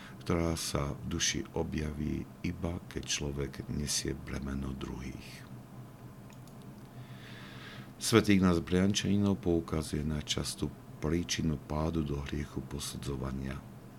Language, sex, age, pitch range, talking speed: Slovak, male, 50-69, 65-80 Hz, 90 wpm